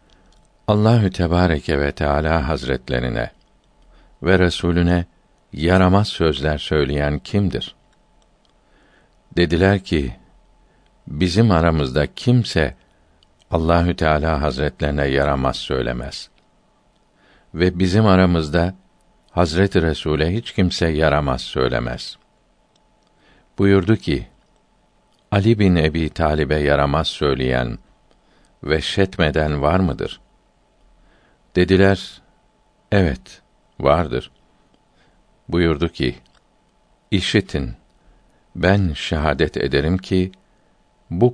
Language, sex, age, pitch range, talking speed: Turkish, male, 50-69, 75-95 Hz, 75 wpm